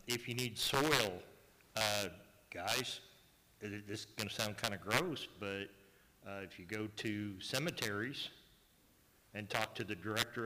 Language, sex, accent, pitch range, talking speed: English, male, American, 105-125 Hz, 150 wpm